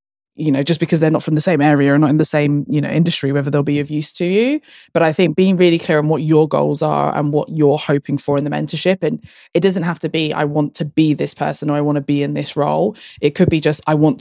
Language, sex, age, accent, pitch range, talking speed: English, female, 20-39, British, 150-175 Hz, 295 wpm